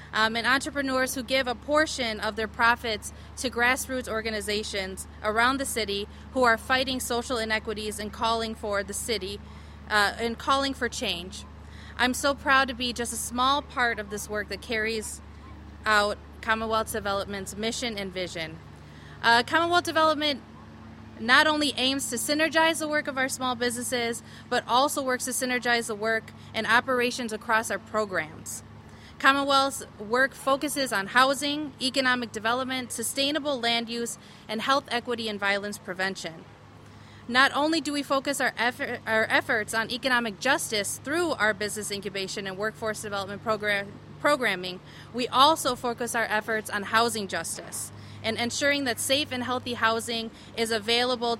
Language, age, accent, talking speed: English, 20-39, American, 155 wpm